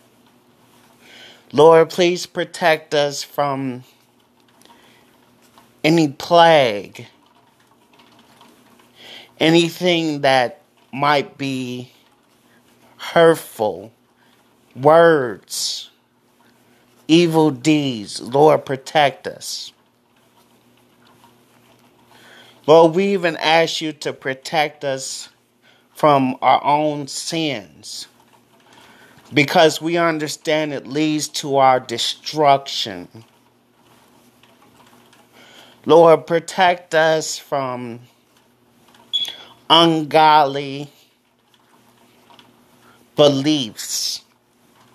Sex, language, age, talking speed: male, English, 30-49, 60 wpm